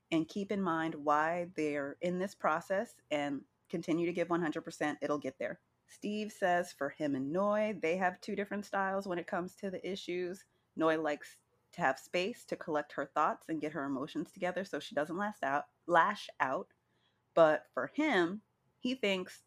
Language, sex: English, female